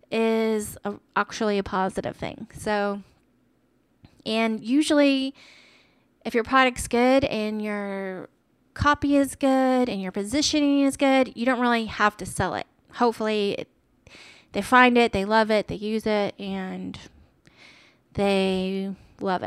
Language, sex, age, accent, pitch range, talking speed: English, female, 20-39, American, 215-275 Hz, 130 wpm